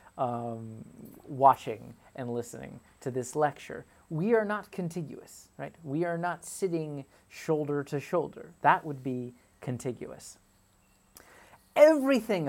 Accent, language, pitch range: American, English, 125-155 Hz